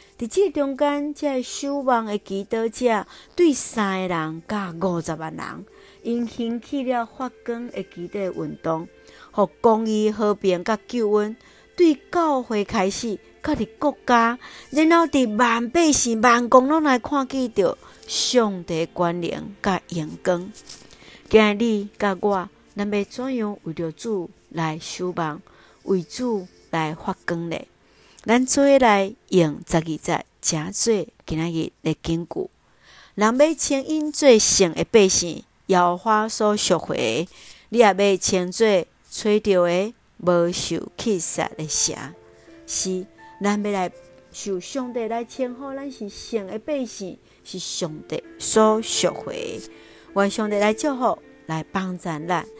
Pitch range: 175-240 Hz